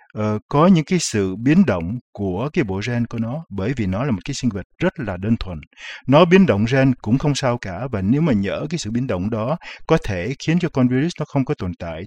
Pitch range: 110-145 Hz